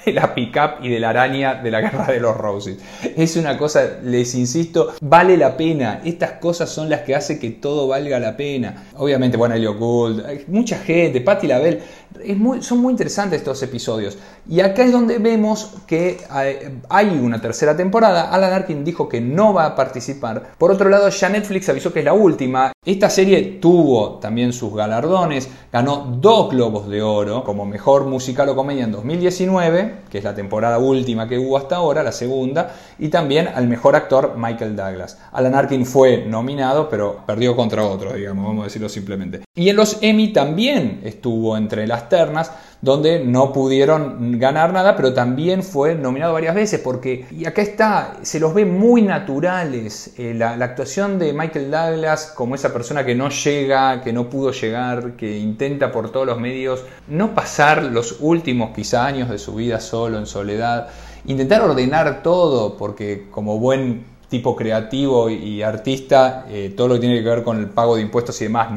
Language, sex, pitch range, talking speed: Spanish, male, 115-165 Hz, 185 wpm